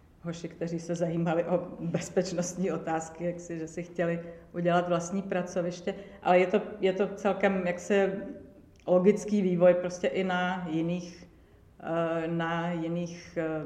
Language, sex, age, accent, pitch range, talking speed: Czech, female, 50-69, native, 160-180 Hz, 135 wpm